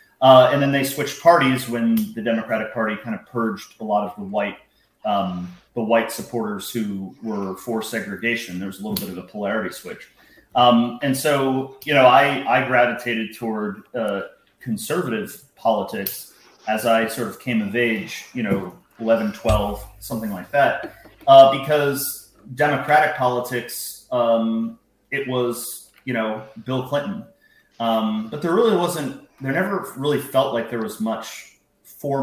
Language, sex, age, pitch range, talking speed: English, male, 30-49, 110-135 Hz, 160 wpm